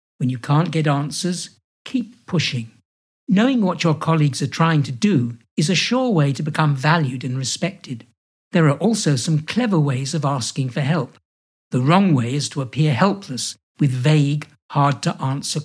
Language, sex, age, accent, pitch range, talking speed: English, male, 60-79, British, 130-185 Hz, 170 wpm